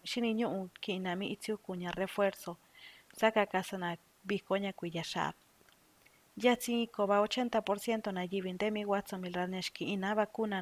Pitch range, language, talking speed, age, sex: 185-210 Hz, Spanish, 145 wpm, 30-49, female